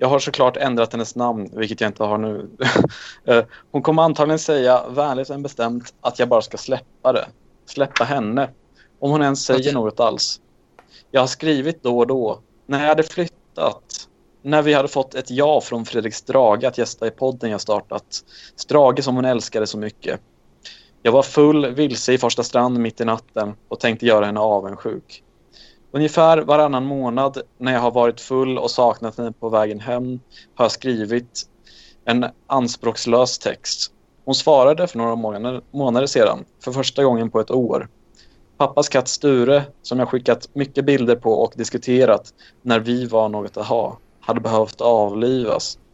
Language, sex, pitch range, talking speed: Swedish, male, 115-135 Hz, 170 wpm